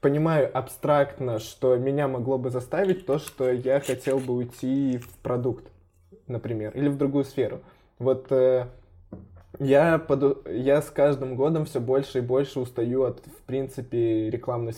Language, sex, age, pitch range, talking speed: Russian, male, 20-39, 110-135 Hz, 150 wpm